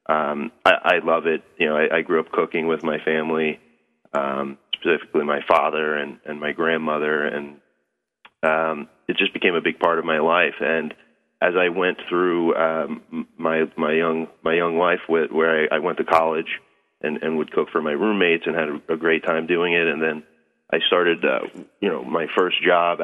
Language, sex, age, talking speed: English, male, 30-49, 205 wpm